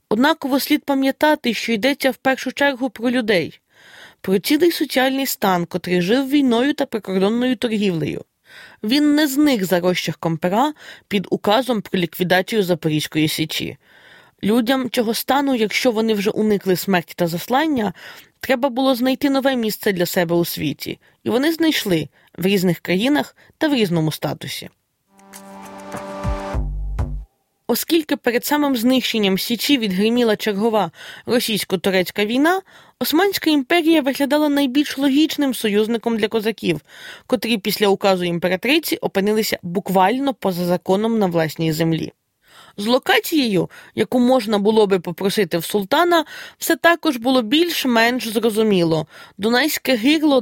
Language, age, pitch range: Ukrainian, 20-39, 195-275 Hz